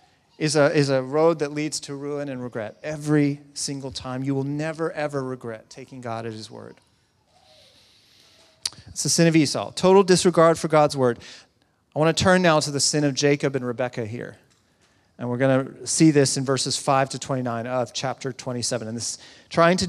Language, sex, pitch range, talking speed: English, male, 130-165 Hz, 200 wpm